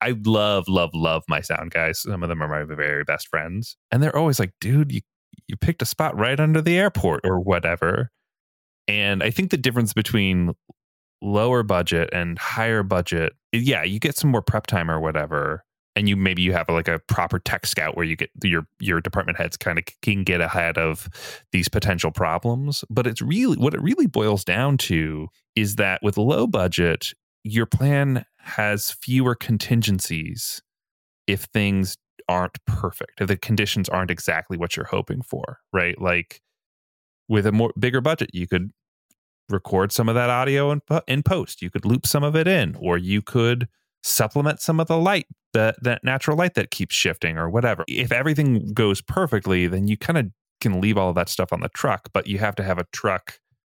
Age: 20-39